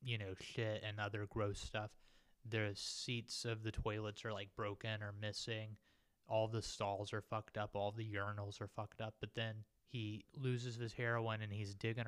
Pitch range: 105-115 Hz